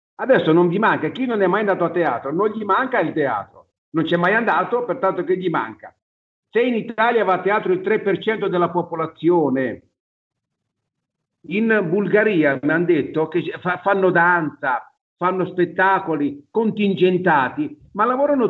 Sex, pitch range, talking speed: male, 185-235 Hz, 155 wpm